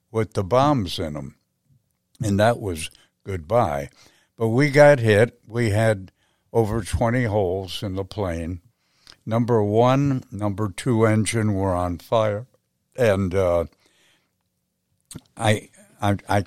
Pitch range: 95-125 Hz